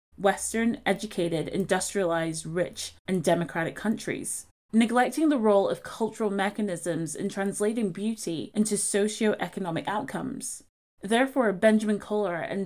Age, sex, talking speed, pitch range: 20-39, female, 110 wpm, 180-225 Hz